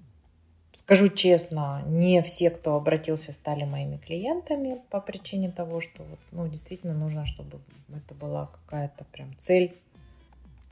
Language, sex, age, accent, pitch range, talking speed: Russian, female, 30-49, native, 155-185 Hz, 125 wpm